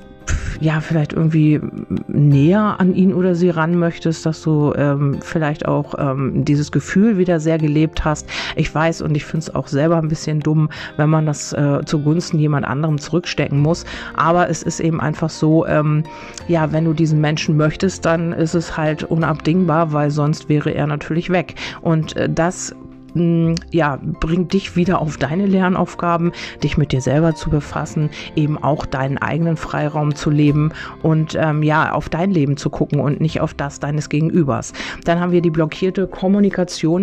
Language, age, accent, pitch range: German, 40-59, German, 150-170 Hz